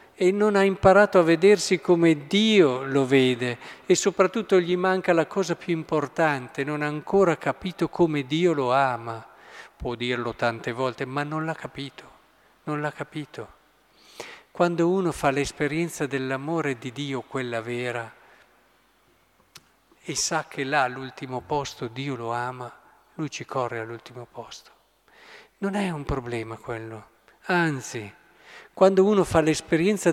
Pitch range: 130-175 Hz